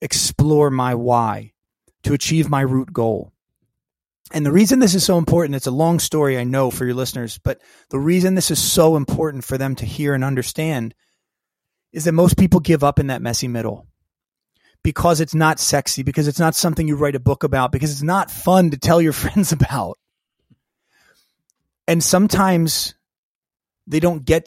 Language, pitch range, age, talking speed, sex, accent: English, 130-160 Hz, 30-49, 180 wpm, male, American